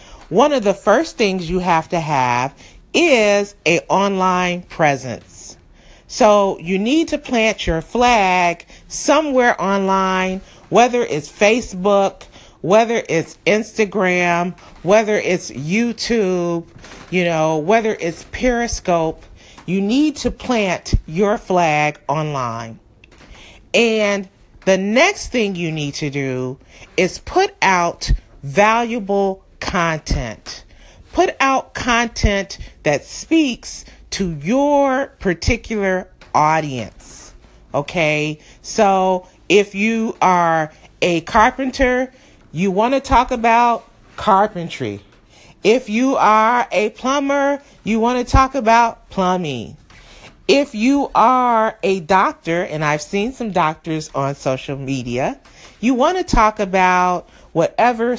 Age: 40-59